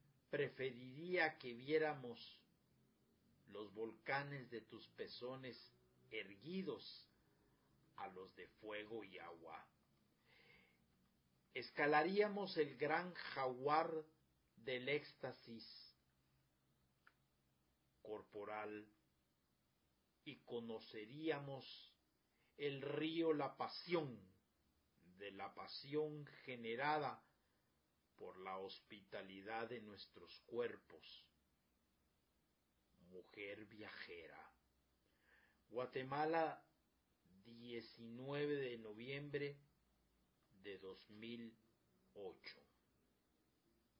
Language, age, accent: Spanish, 50-69, Mexican